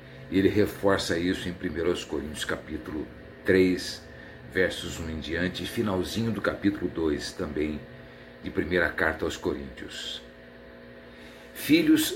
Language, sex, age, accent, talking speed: Portuguese, male, 60-79, Brazilian, 120 wpm